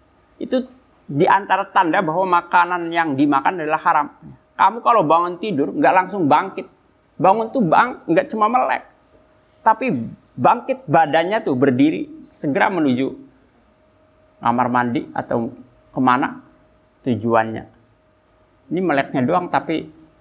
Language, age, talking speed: Indonesian, 50-69, 115 wpm